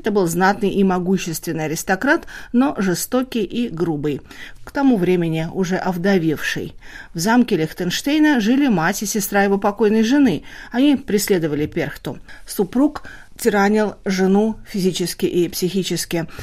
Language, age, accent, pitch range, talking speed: Russian, 40-59, native, 160-240 Hz, 125 wpm